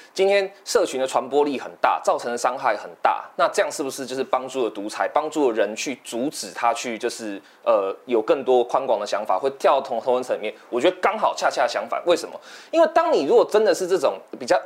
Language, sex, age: Chinese, male, 20-39